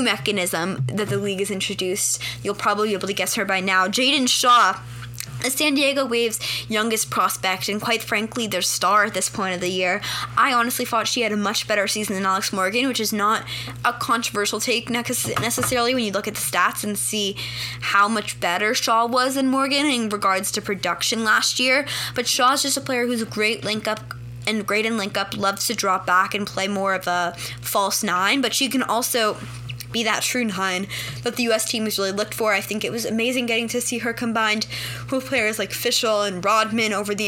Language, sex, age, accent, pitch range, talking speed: English, female, 10-29, American, 190-230 Hz, 210 wpm